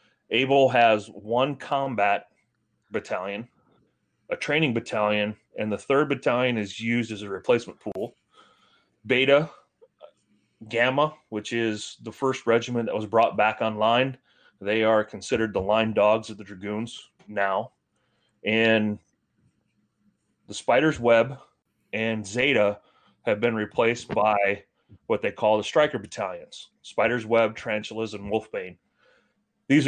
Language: English